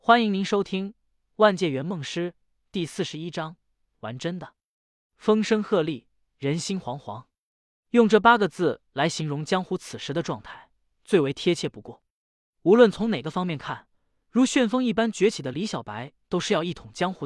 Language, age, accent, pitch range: Chinese, 20-39, native, 145-205 Hz